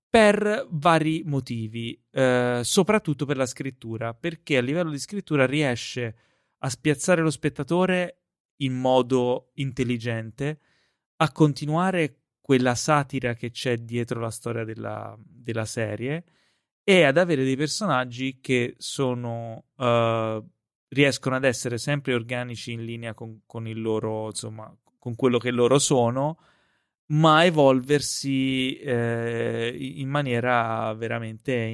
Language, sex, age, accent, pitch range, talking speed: Italian, male, 30-49, native, 115-145 Hz, 120 wpm